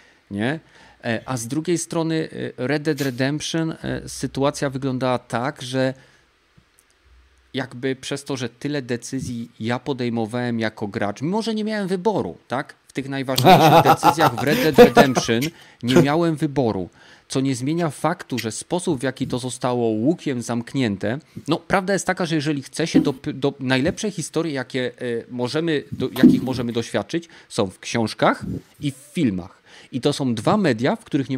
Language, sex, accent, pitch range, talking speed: Polish, male, native, 120-150 Hz, 150 wpm